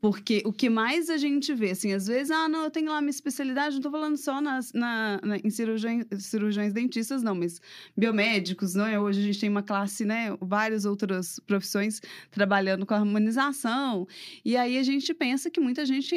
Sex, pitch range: female, 205-275 Hz